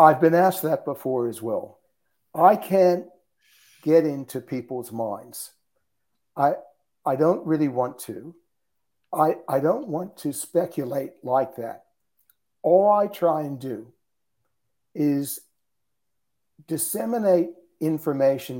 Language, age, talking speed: English, 60-79, 115 wpm